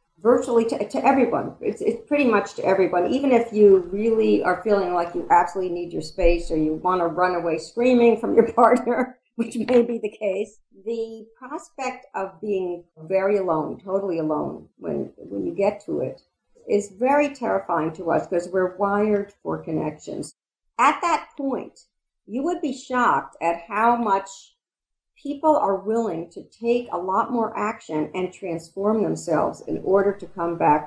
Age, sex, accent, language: 50-69, female, American, English